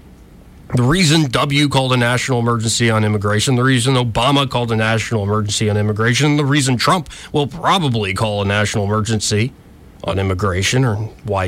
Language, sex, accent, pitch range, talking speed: English, male, American, 105-145 Hz, 165 wpm